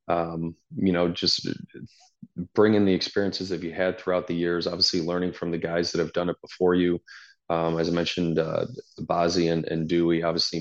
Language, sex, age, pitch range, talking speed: English, male, 30-49, 85-90 Hz, 200 wpm